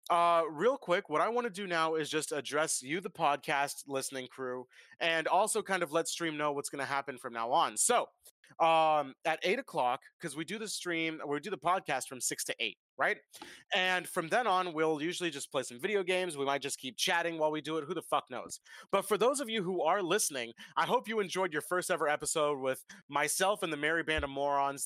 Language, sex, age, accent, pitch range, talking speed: English, male, 30-49, American, 140-180 Hz, 235 wpm